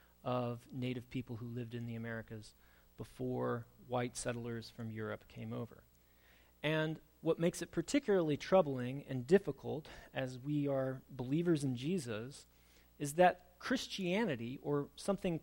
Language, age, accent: English, 30-49, American